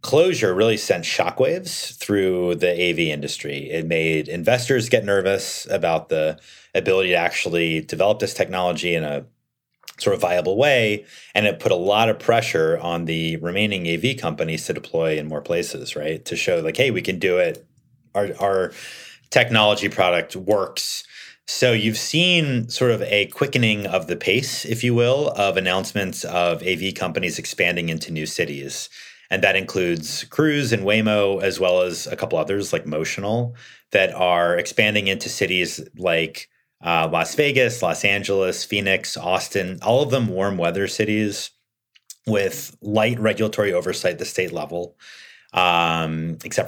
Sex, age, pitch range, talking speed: male, 30-49, 85-120 Hz, 160 wpm